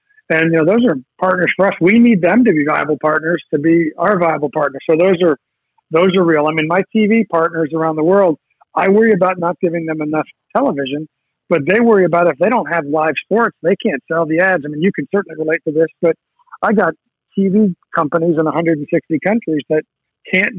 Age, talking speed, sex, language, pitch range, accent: 50-69, 220 wpm, male, English, 155-180 Hz, American